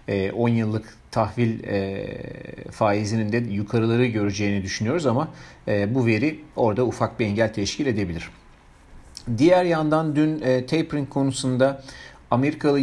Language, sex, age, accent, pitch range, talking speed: Turkish, male, 40-59, native, 105-135 Hz, 110 wpm